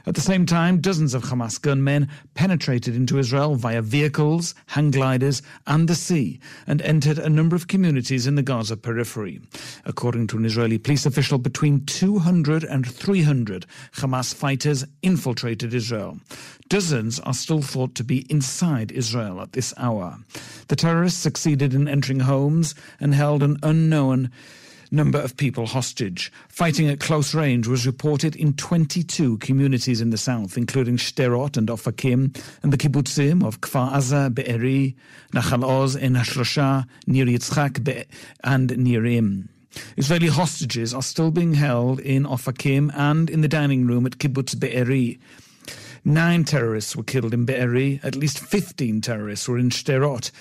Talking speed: 150 wpm